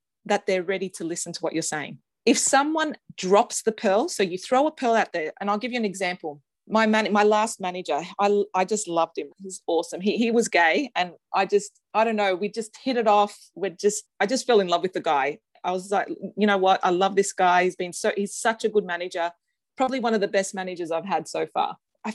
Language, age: English, 30-49